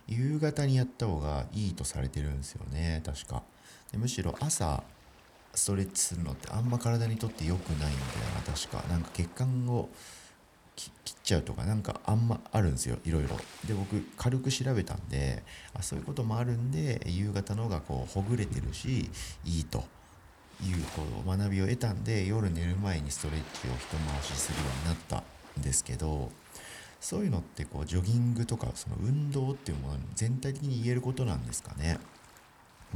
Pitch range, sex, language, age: 75-115 Hz, male, Japanese, 50-69